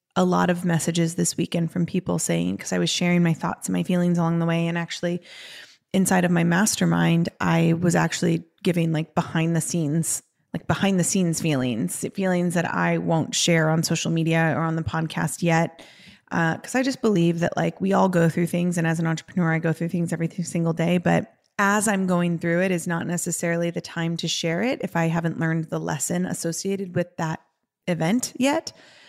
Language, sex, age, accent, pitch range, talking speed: English, female, 20-39, American, 165-180 Hz, 210 wpm